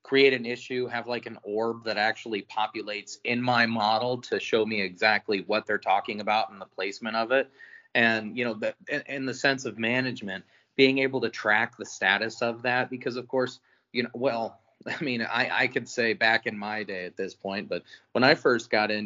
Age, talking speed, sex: 30-49, 215 wpm, male